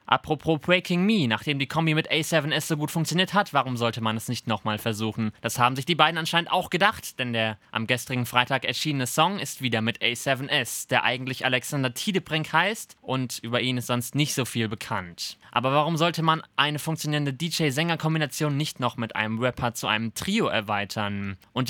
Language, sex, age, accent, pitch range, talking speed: German, male, 20-39, German, 115-150 Hz, 190 wpm